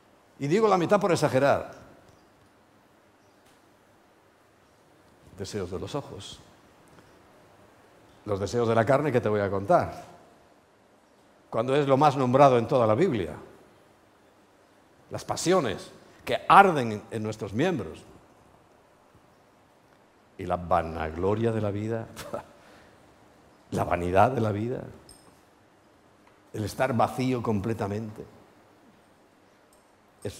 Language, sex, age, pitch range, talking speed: Spanish, male, 60-79, 105-130 Hz, 105 wpm